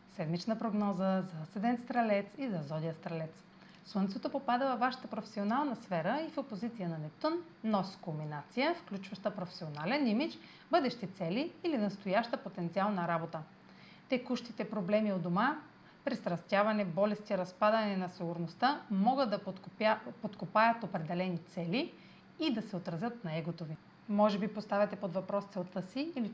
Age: 30-49